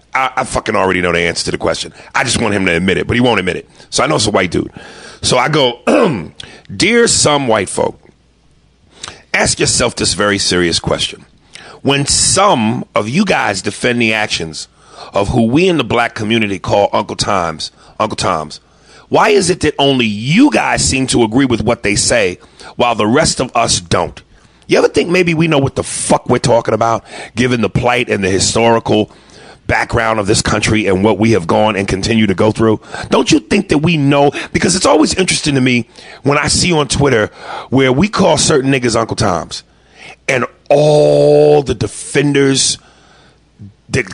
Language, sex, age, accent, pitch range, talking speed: English, male, 40-59, American, 110-145 Hz, 195 wpm